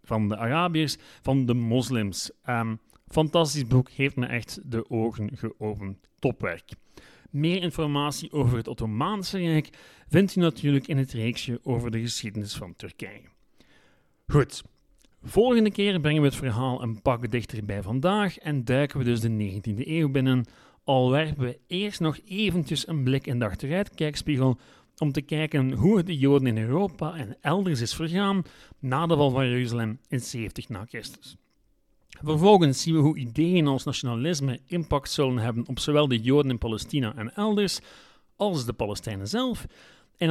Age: 40-59